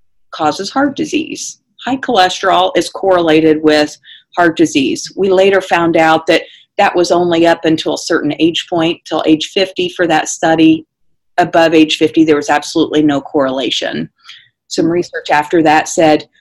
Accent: American